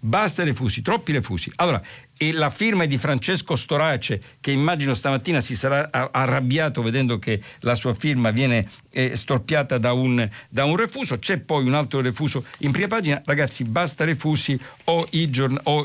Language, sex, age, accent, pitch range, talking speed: Italian, male, 50-69, native, 120-150 Hz, 175 wpm